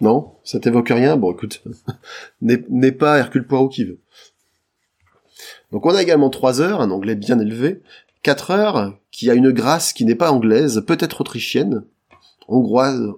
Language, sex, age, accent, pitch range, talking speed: French, male, 30-49, French, 115-150 Hz, 165 wpm